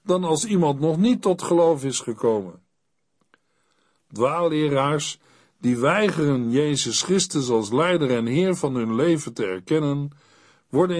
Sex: male